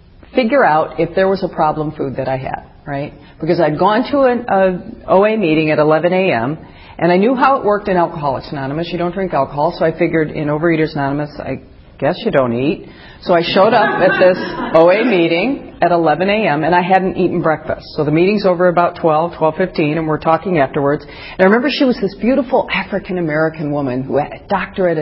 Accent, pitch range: American, 150-190 Hz